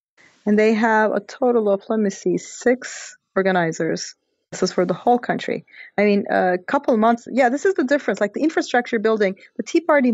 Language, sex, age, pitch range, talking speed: English, female, 30-49, 185-230 Hz, 205 wpm